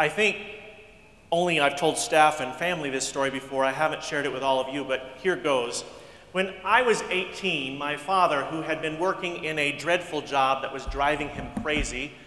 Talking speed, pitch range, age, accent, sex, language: 200 wpm, 135-170 Hz, 40-59, American, male, English